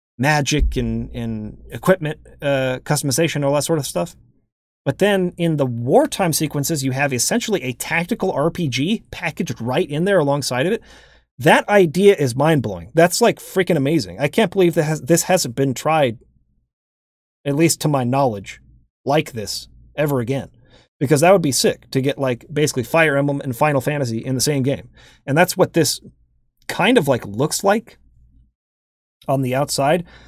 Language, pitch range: English, 130-180 Hz